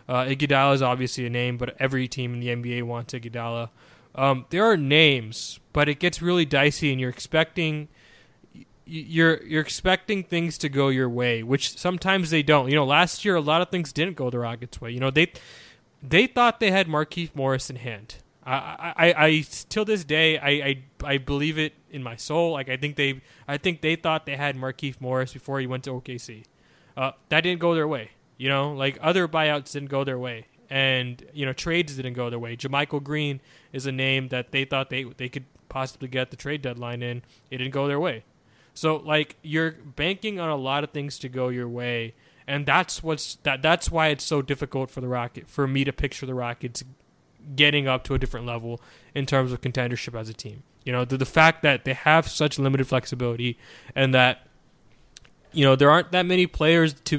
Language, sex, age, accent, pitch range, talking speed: English, male, 20-39, American, 125-155 Hz, 215 wpm